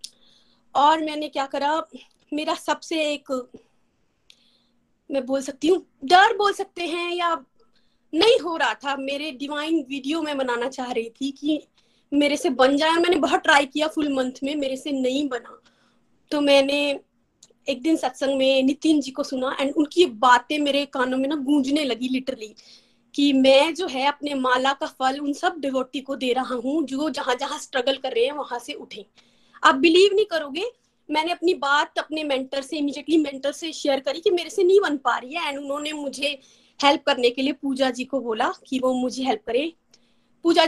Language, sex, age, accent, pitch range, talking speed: Hindi, female, 20-39, native, 265-325 Hz, 190 wpm